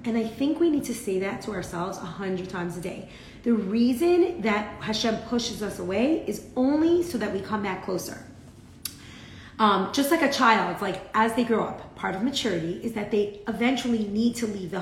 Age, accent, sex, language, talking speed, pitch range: 30-49, American, female, English, 210 wpm, 195-250 Hz